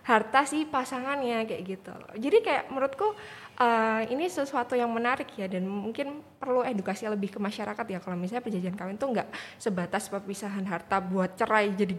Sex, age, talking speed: female, 20-39, 170 wpm